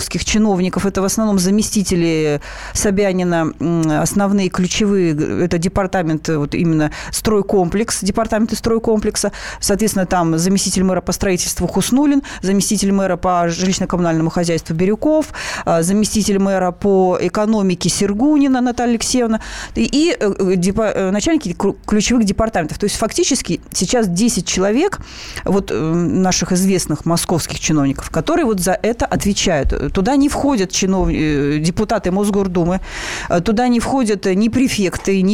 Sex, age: female, 30-49